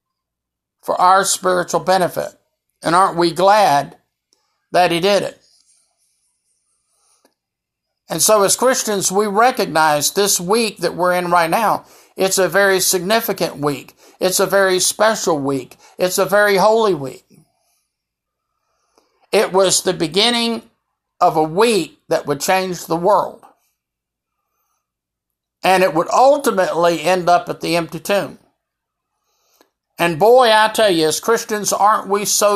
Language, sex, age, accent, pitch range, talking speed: English, male, 60-79, American, 170-210 Hz, 135 wpm